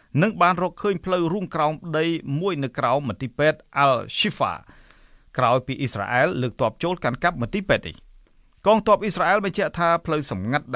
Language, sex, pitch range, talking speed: English, male, 120-155 Hz, 135 wpm